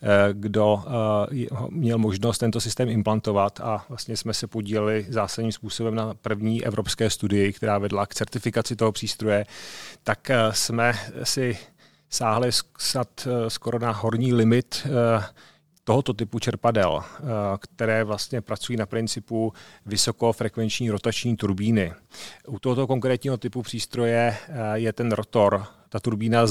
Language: Czech